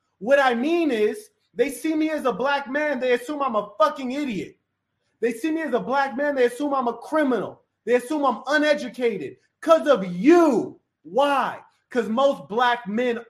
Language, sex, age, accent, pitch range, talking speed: English, male, 30-49, American, 200-300 Hz, 185 wpm